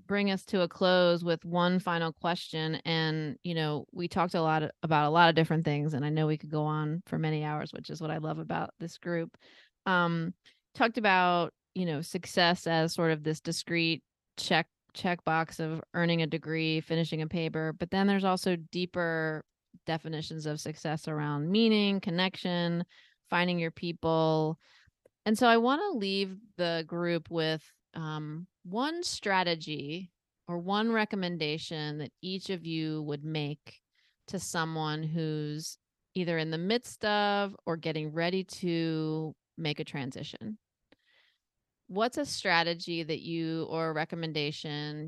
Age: 30-49